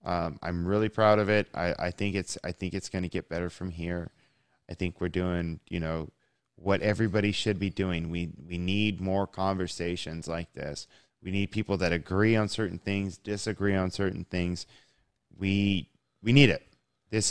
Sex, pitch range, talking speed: male, 90-110 Hz, 185 wpm